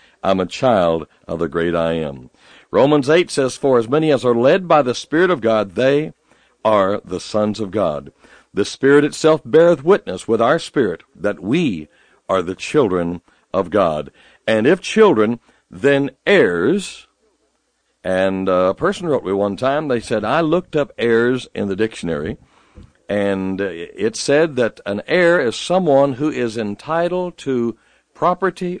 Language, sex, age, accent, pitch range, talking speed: English, male, 60-79, American, 100-155 Hz, 160 wpm